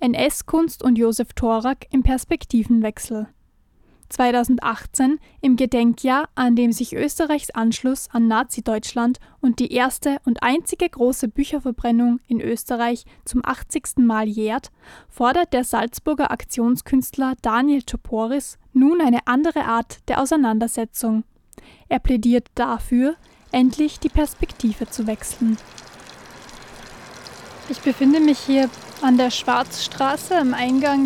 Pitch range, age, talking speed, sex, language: 235-275 Hz, 10-29, 110 wpm, female, German